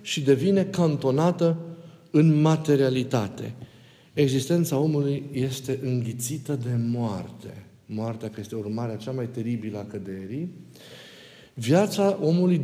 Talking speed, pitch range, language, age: 105 wpm, 130-180 Hz, Romanian, 50-69